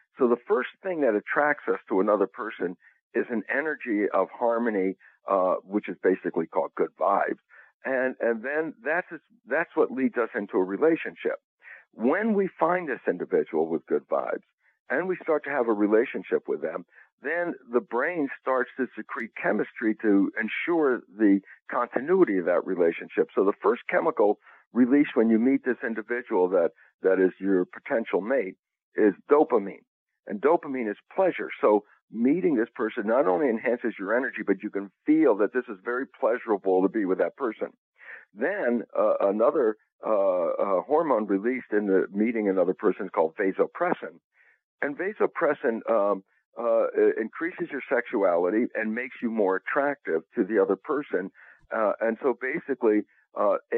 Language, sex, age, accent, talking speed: English, male, 60-79, American, 160 wpm